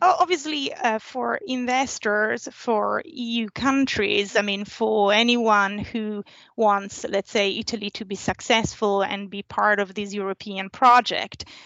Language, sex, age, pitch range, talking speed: English, female, 30-49, 205-245 Hz, 135 wpm